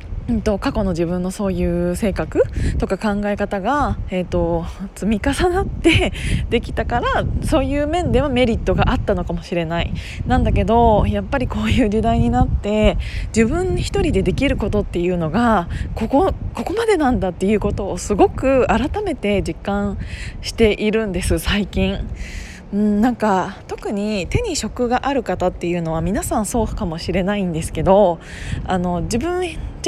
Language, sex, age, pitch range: Japanese, female, 20-39, 170-235 Hz